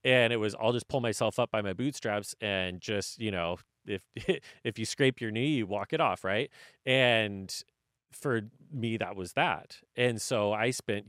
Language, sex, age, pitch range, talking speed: English, male, 30-49, 100-125 Hz, 195 wpm